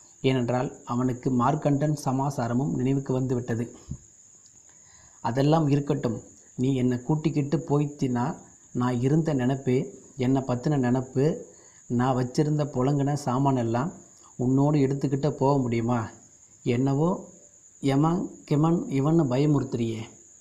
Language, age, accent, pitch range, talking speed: Tamil, 30-49, native, 125-145 Hz, 95 wpm